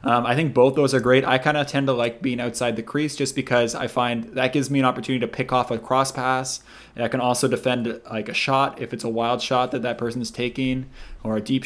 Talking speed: 270 wpm